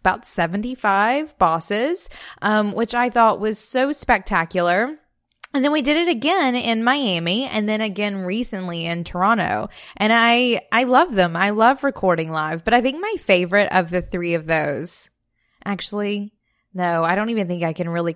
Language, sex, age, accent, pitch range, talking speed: English, female, 20-39, American, 180-235 Hz, 170 wpm